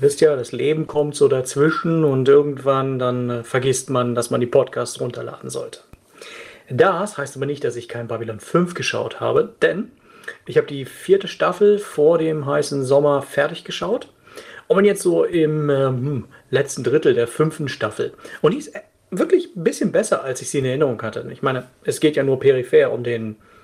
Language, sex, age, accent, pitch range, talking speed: German, male, 40-59, German, 140-230 Hz, 190 wpm